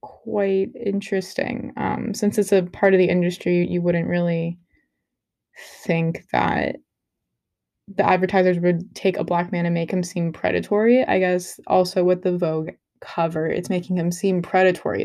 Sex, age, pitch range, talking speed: female, 10-29, 170-205 Hz, 155 wpm